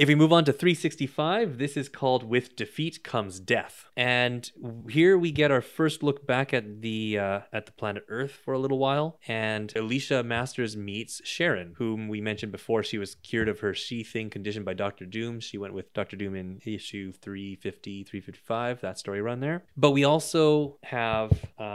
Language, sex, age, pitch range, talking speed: English, male, 20-39, 105-135 Hz, 190 wpm